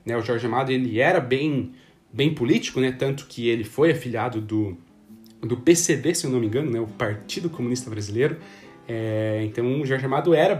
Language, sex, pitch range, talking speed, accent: Portuguese, male, 125-170 Hz, 195 wpm, Brazilian